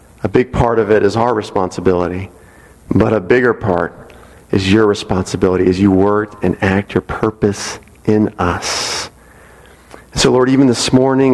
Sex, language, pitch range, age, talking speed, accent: male, English, 105-135 Hz, 40-59, 155 wpm, American